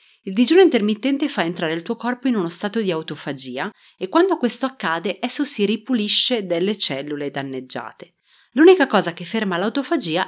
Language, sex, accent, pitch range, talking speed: Italian, female, native, 155-240 Hz, 165 wpm